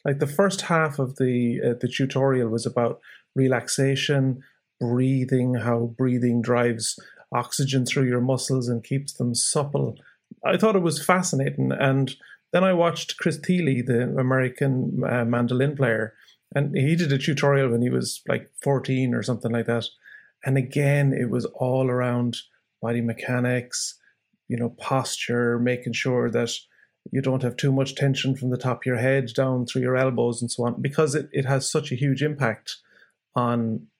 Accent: Irish